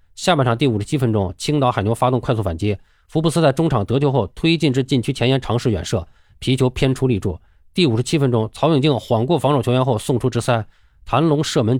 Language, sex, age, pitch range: Chinese, male, 20-39, 105-140 Hz